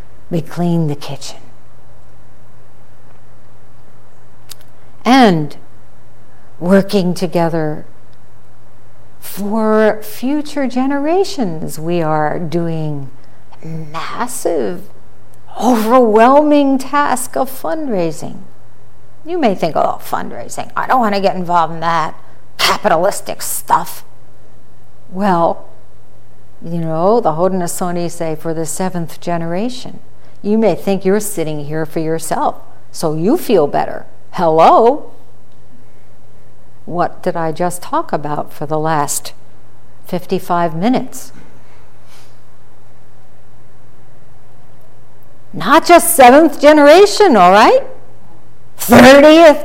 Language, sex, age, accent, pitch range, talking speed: English, female, 60-79, American, 155-250 Hz, 90 wpm